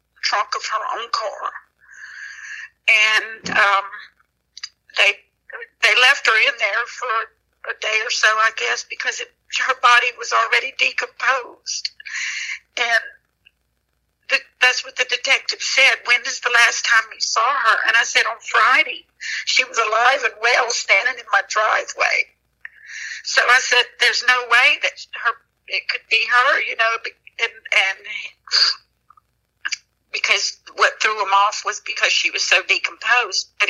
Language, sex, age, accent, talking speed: English, female, 60-79, American, 150 wpm